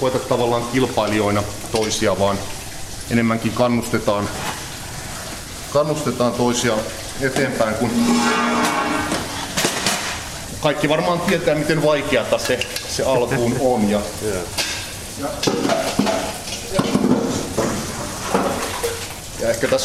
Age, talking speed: 30-49, 70 wpm